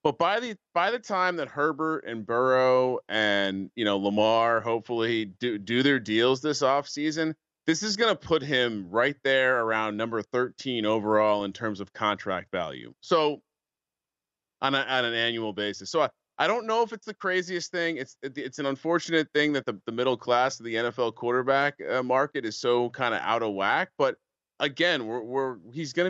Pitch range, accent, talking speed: 110-150 Hz, American, 190 wpm